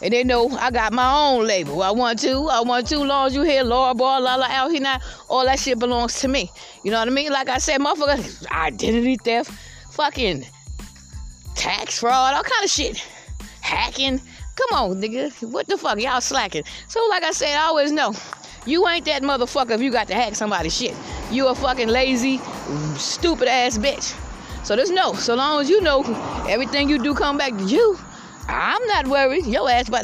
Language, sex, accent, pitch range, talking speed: English, female, American, 245-320 Hz, 210 wpm